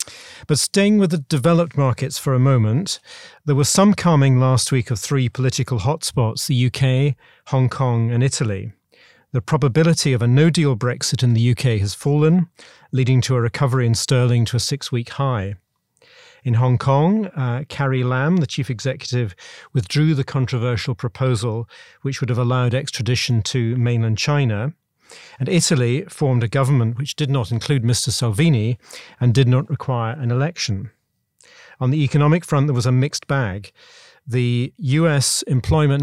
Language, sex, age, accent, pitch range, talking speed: English, male, 40-59, British, 120-145 Hz, 160 wpm